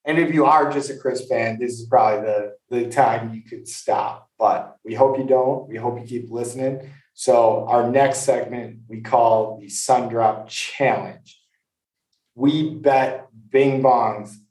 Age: 20-39